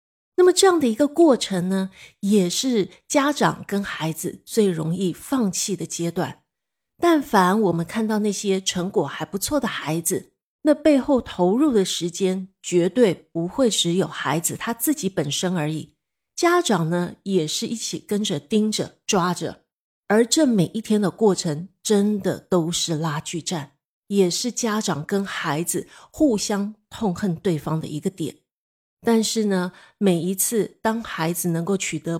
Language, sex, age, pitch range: Chinese, female, 30-49, 170-220 Hz